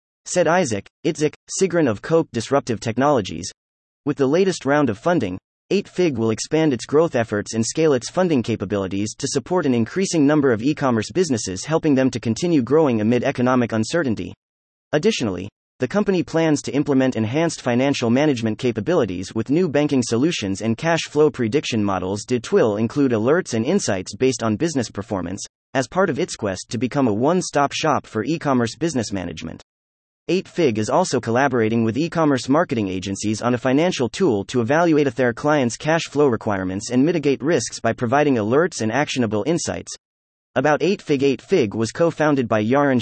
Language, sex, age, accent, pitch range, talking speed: English, male, 30-49, American, 110-155 Hz, 170 wpm